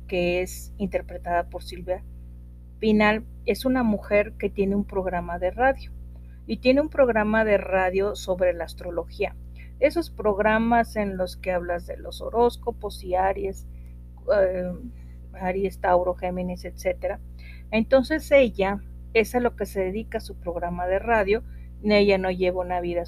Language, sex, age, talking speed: Spanish, female, 50-69, 150 wpm